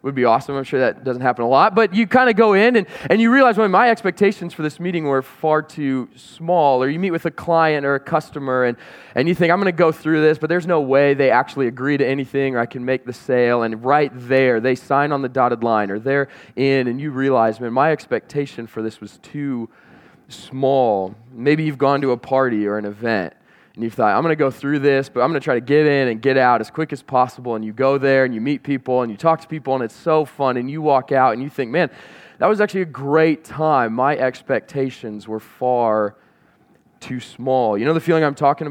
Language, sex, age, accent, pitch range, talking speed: English, male, 20-39, American, 125-155 Hz, 255 wpm